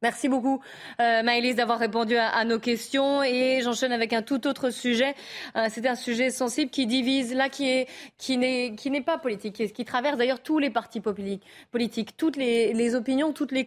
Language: French